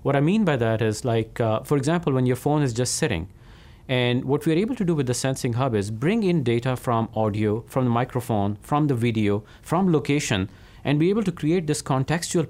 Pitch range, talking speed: 115-160 Hz, 225 wpm